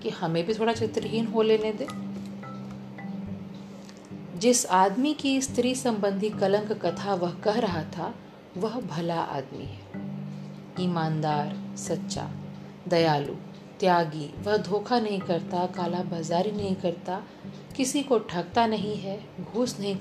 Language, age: Hindi, 40-59